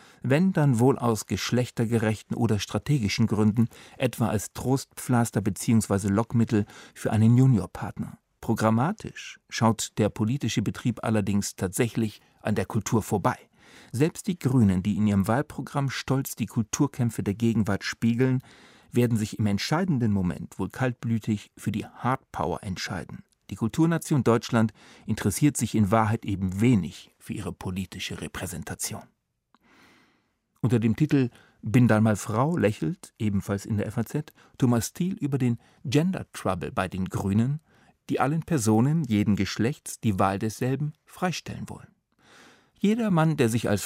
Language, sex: German, male